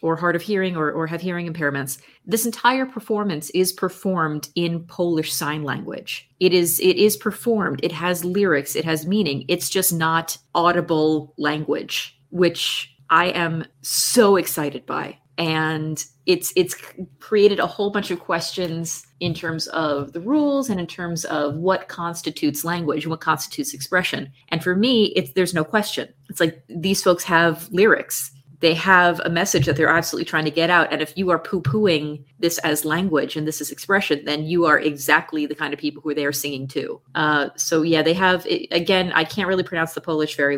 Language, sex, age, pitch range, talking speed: English, female, 30-49, 150-180 Hz, 190 wpm